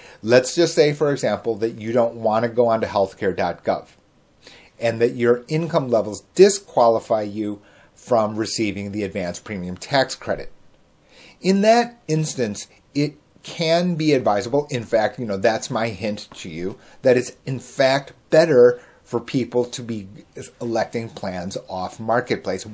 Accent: American